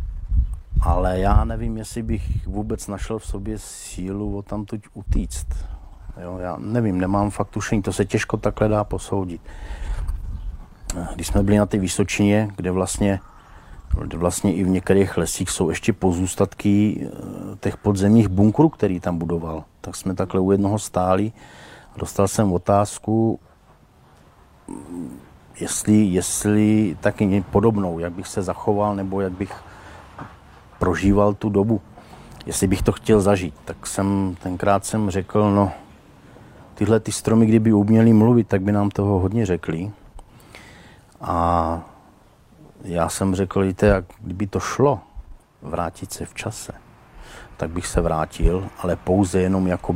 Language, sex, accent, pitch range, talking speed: Czech, male, native, 90-105 Hz, 140 wpm